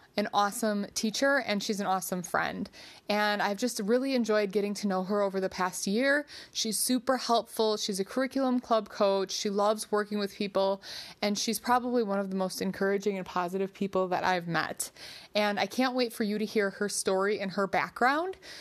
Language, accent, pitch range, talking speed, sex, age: English, American, 195-240 Hz, 195 wpm, female, 20-39